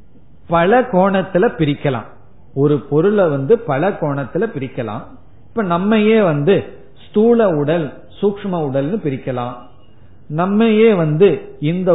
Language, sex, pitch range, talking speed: Tamil, male, 135-190 Hz, 75 wpm